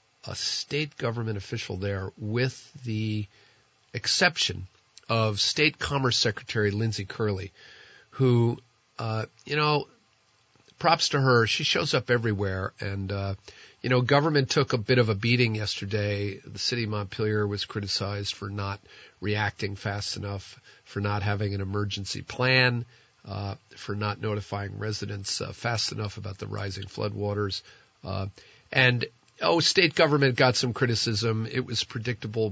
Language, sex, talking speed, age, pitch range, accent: English, male, 140 wpm, 50-69, 100-120 Hz, American